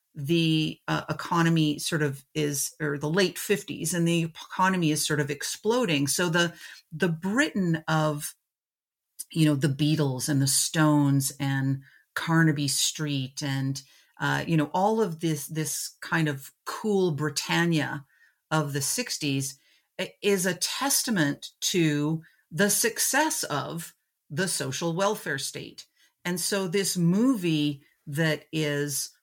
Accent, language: American, English